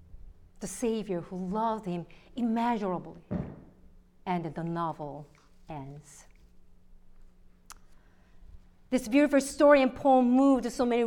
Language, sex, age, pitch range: English, female, 50-69, 160-235 Hz